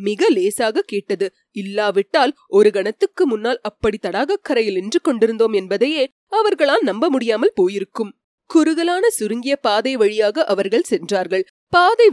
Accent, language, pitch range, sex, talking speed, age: native, Tamil, 215-350 Hz, female, 120 wpm, 30-49